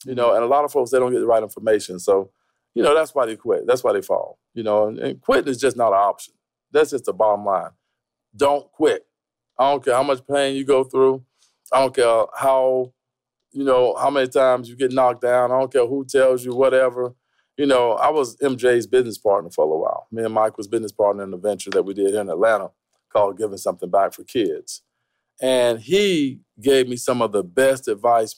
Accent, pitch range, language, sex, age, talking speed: American, 115-140 Hz, English, male, 40-59, 235 wpm